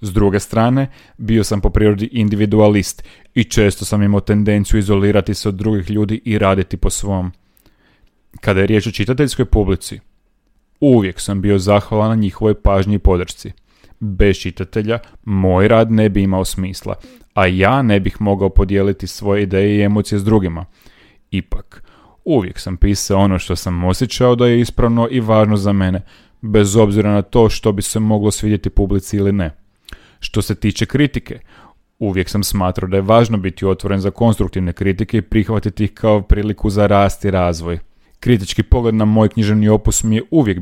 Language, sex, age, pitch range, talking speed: Croatian, male, 30-49, 95-110 Hz, 175 wpm